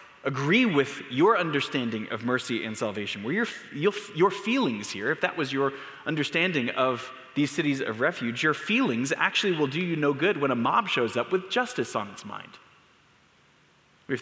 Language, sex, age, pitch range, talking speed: English, male, 20-39, 125-170 Hz, 180 wpm